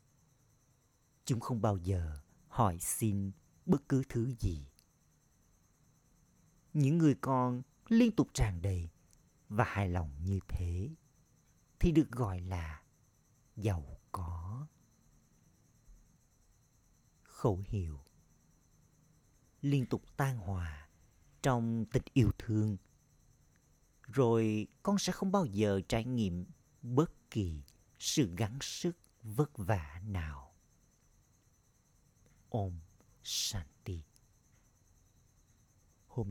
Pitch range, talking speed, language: 95-130 Hz, 90 wpm, Vietnamese